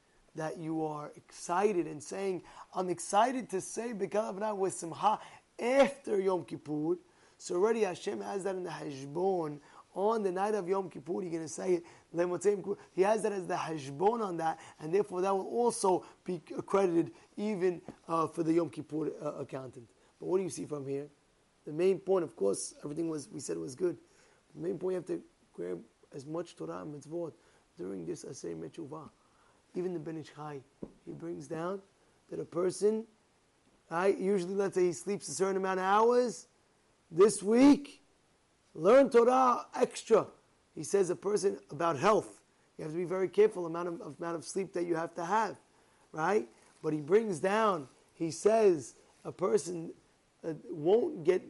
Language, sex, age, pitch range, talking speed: English, male, 20-39, 165-215 Hz, 180 wpm